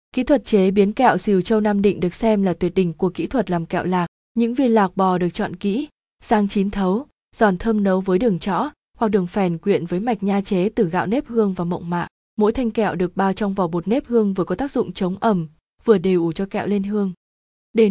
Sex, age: female, 20-39